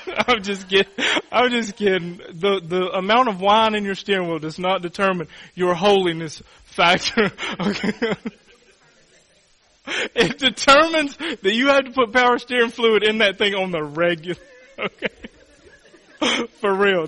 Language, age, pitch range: English, 30-49, 205-275 Hz